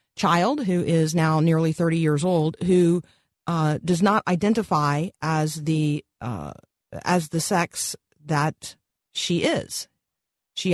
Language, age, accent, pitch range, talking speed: English, 40-59, American, 160-200 Hz, 130 wpm